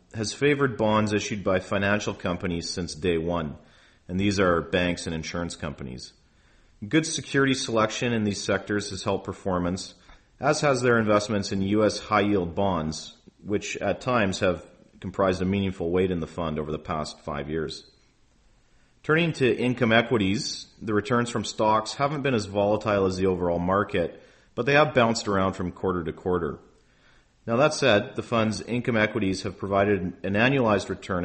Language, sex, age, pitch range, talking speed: English, male, 40-59, 90-110 Hz, 165 wpm